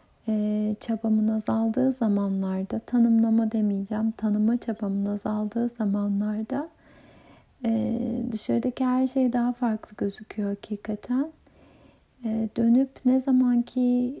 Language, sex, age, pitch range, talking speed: Turkish, female, 30-49, 210-235 Hz, 95 wpm